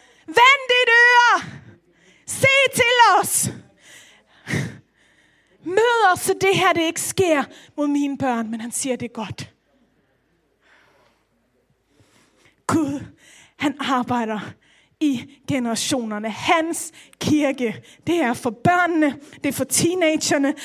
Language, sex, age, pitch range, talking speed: Danish, female, 30-49, 300-425 Hz, 110 wpm